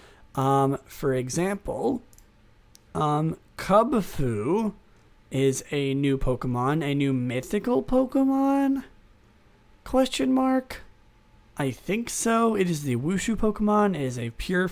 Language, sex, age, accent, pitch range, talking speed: English, male, 30-49, American, 125-175 Hz, 110 wpm